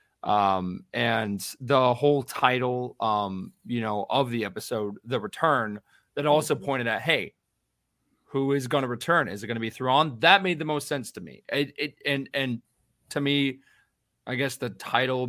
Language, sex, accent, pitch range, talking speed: English, male, American, 105-135 Hz, 180 wpm